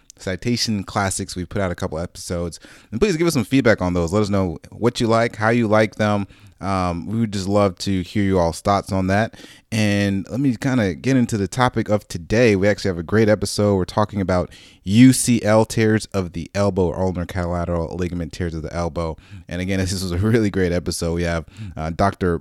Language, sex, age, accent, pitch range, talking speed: English, male, 30-49, American, 90-110 Hz, 220 wpm